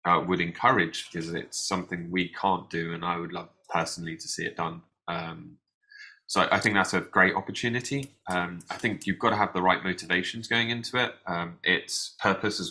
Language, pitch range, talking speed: English, 90-115 Hz, 205 wpm